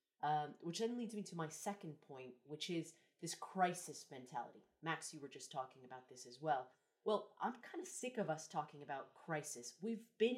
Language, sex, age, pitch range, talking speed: English, female, 30-49, 150-195 Hz, 200 wpm